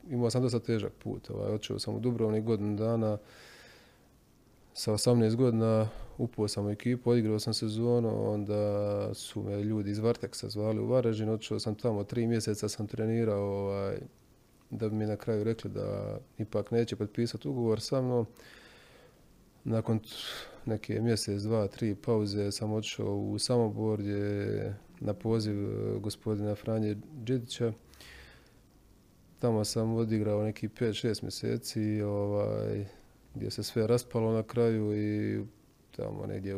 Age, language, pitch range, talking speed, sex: 20-39, Croatian, 105-120 Hz, 140 wpm, male